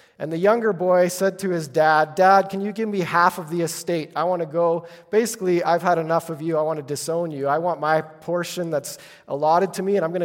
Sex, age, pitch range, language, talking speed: male, 30-49, 140-175 Hz, English, 250 wpm